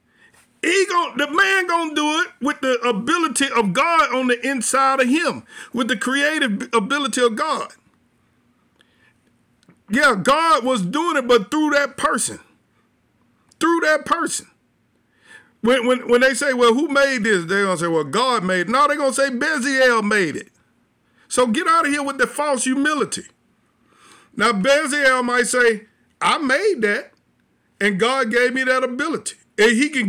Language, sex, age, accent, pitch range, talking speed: English, male, 50-69, American, 240-310 Hz, 170 wpm